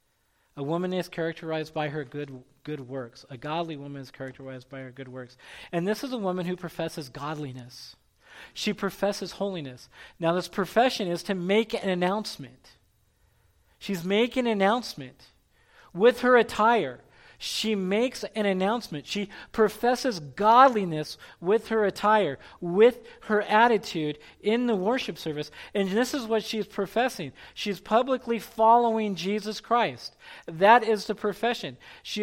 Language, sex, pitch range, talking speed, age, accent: English, male, 155-225 Hz, 145 wpm, 40-59, American